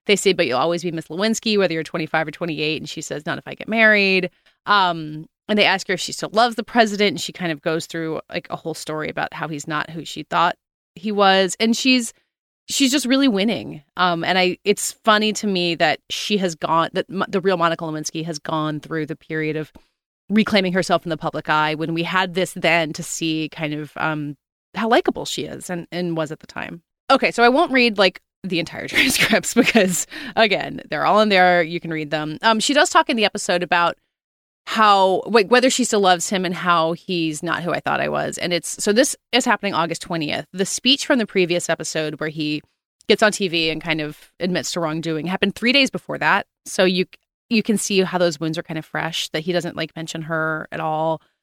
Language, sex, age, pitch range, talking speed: English, female, 30-49, 160-205 Hz, 230 wpm